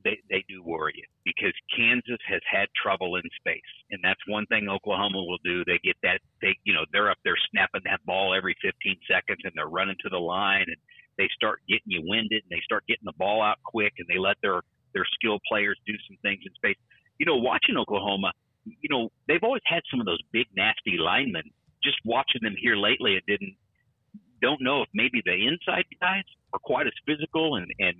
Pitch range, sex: 100-135 Hz, male